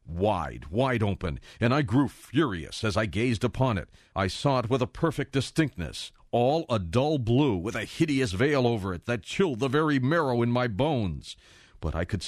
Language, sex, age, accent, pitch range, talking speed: English, male, 50-69, American, 95-135 Hz, 195 wpm